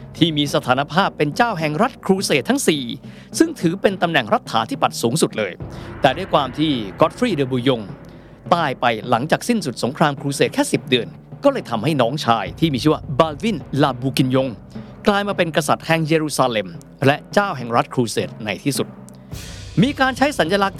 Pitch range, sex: 130-195 Hz, male